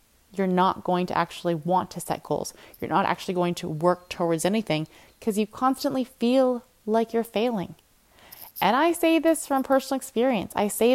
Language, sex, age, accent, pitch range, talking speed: English, female, 20-39, American, 170-210 Hz, 180 wpm